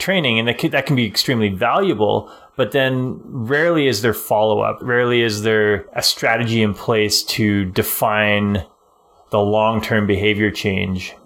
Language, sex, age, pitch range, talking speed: English, male, 20-39, 105-120 Hz, 145 wpm